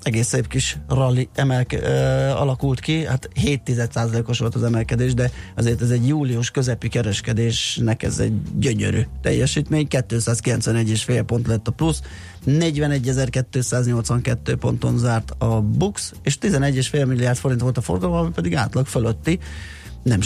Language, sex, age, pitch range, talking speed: Hungarian, male, 30-49, 115-135 Hz, 140 wpm